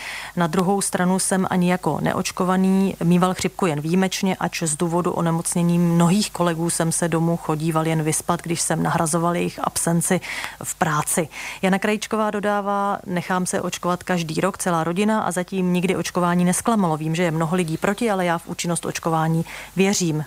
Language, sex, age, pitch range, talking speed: Czech, female, 30-49, 170-190 Hz, 170 wpm